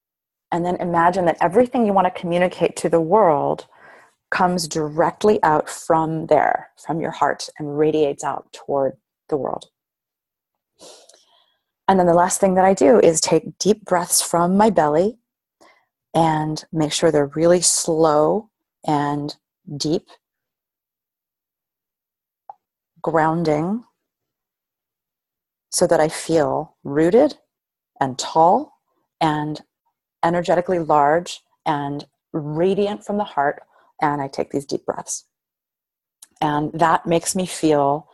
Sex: female